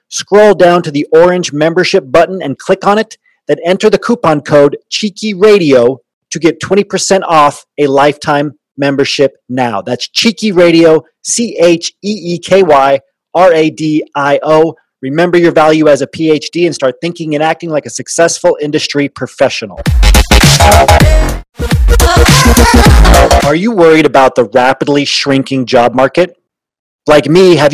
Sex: male